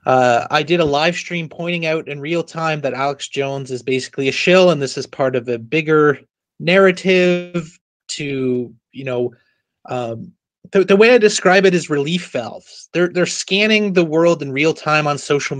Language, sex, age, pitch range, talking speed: English, male, 30-49, 145-185 Hz, 190 wpm